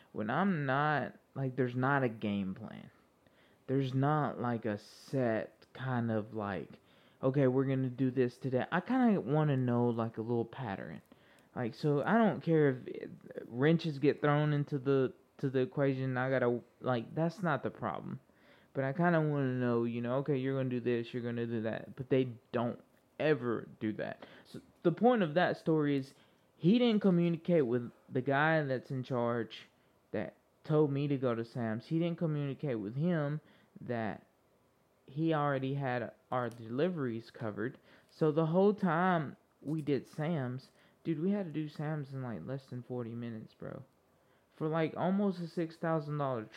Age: 20-39